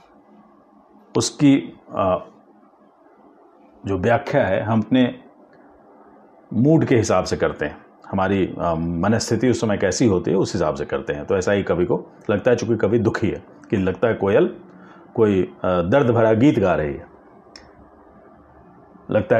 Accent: native